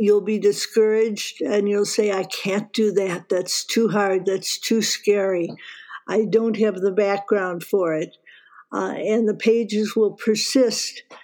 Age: 60-79